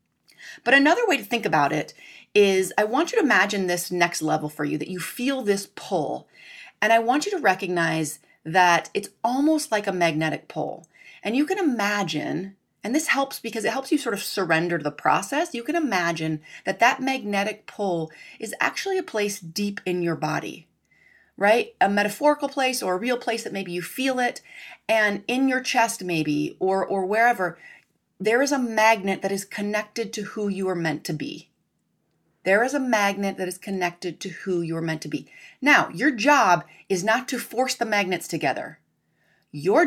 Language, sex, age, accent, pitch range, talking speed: English, female, 30-49, American, 175-240 Hz, 195 wpm